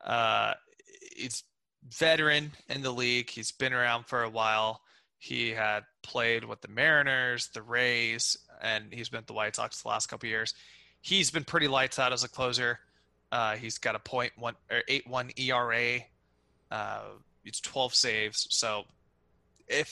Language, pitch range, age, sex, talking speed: English, 110-145 Hz, 20-39, male, 165 wpm